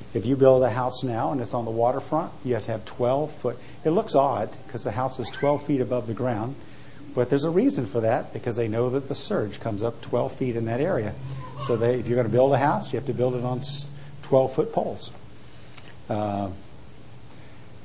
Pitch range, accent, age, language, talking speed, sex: 110-140 Hz, American, 50-69, English, 220 wpm, male